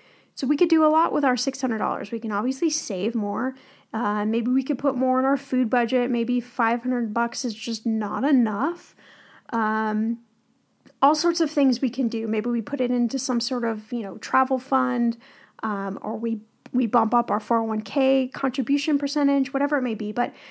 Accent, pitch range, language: American, 230-280 Hz, English